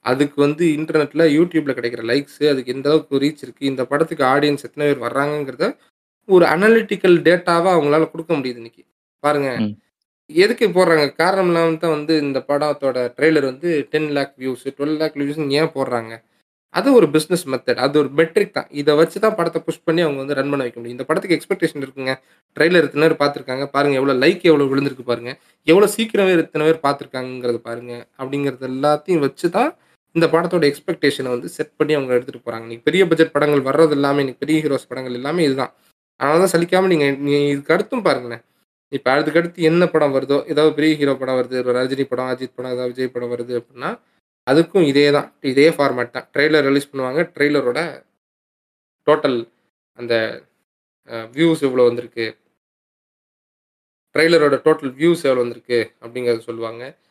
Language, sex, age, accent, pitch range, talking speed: Tamil, male, 20-39, native, 130-160 Hz, 165 wpm